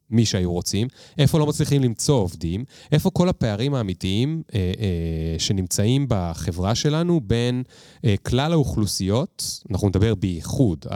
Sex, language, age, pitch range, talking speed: male, Hebrew, 30-49, 100-145 Hz, 130 wpm